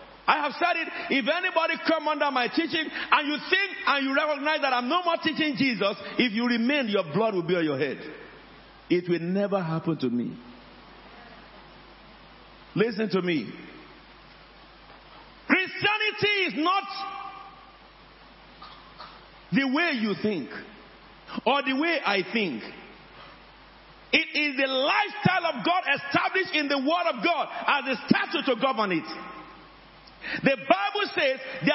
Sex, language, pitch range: male, English, 265-375 Hz